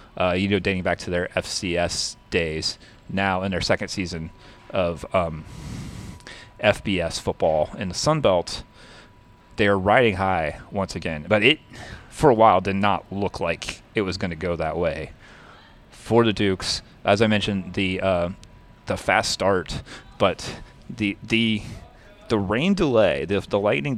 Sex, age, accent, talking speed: male, 30-49, American, 170 wpm